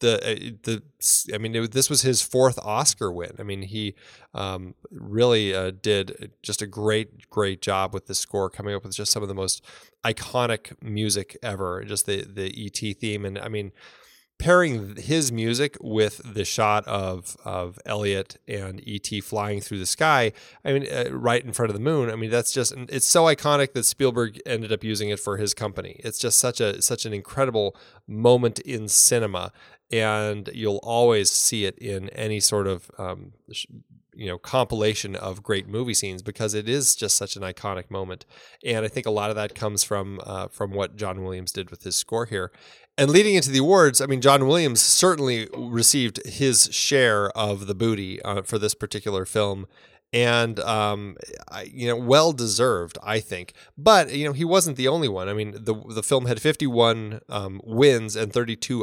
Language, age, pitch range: English, 20-39, 100-125 Hz